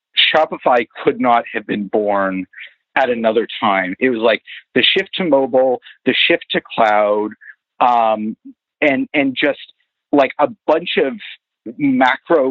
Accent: American